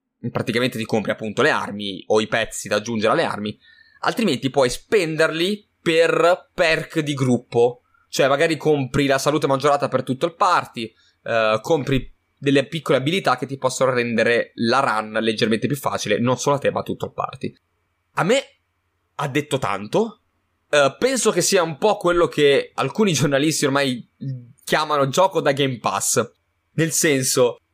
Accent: native